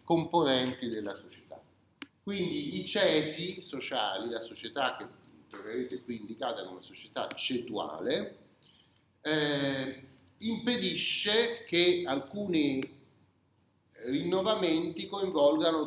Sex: male